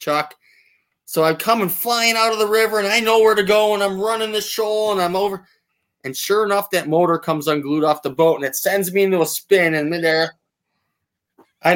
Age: 20-39